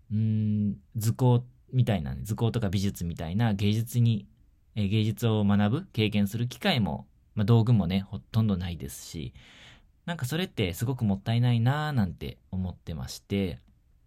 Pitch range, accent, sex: 95-125 Hz, native, male